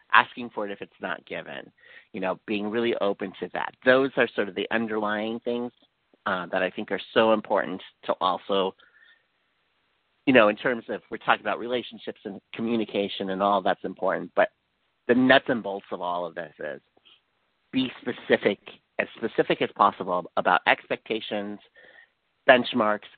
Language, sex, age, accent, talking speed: English, male, 50-69, American, 165 wpm